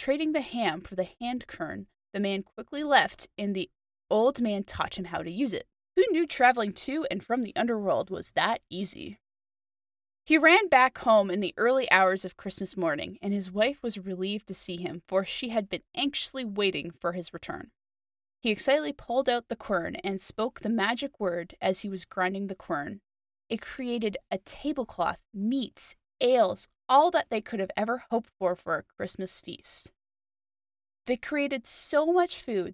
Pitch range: 185-265 Hz